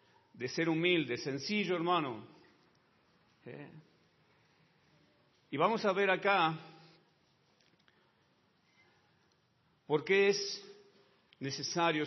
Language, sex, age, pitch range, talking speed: Spanish, male, 50-69, 130-175 Hz, 75 wpm